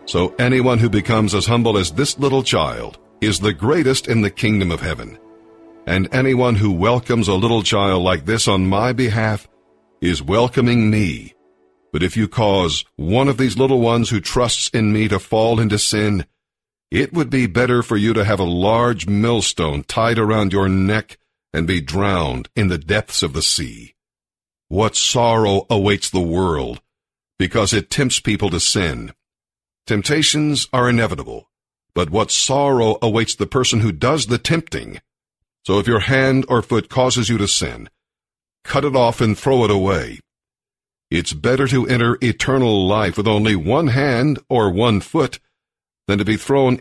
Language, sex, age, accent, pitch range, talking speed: English, male, 50-69, American, 100-125 Hz, 170 wpm